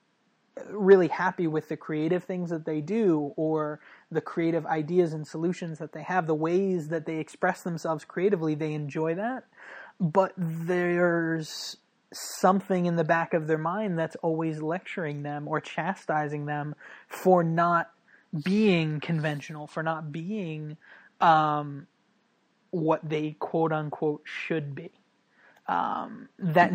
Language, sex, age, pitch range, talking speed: English, male, 20-39, 155-180 Hz, 135 wpm